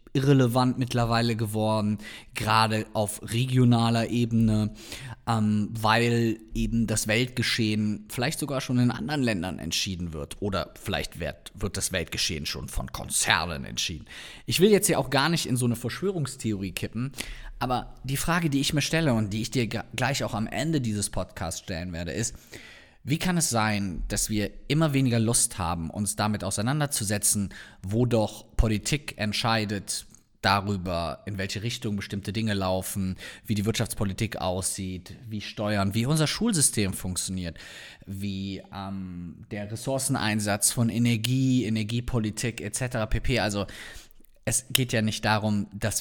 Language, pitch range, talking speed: German, 100-125 Hz, 145 wpm